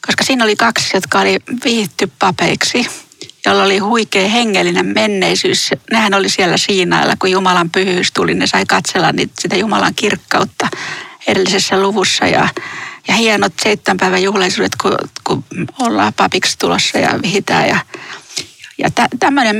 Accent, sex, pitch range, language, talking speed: native, female, 190-250 Hz, Finnish, 140 wpm